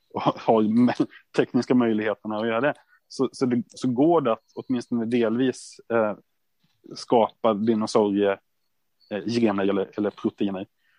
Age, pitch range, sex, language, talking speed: 30-49, 115-135 Hz, male, Swedish, 130 wpm